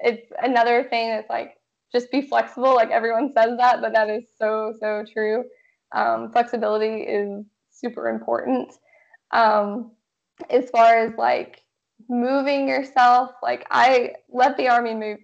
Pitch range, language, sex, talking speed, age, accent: 220-260 Hz, English, female, 140 wpm, 10-29, American